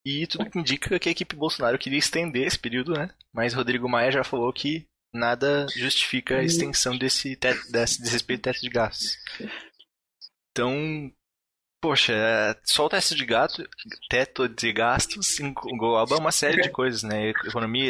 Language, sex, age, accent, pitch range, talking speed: Portuguese, male, 20-39, Brazilian, 115-145 Hz, 160 wpm